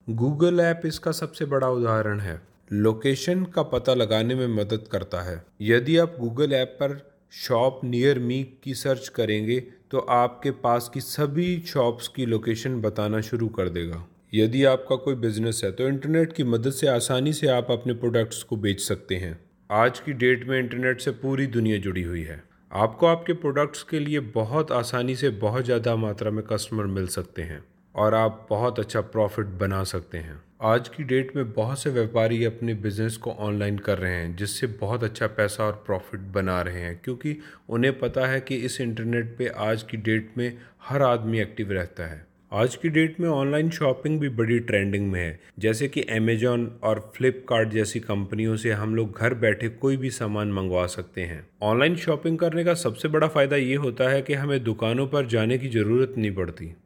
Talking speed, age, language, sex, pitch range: 190 wpm, 30-49, Hindi, male, 105-140 Hz